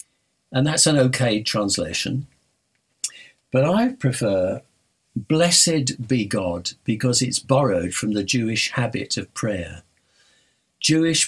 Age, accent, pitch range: 60-79, British, 105-135 Hz